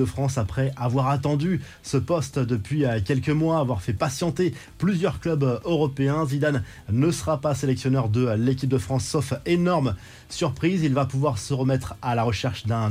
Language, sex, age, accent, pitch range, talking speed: French, male, 20-39, French, 125-150 Hz, 170 wpm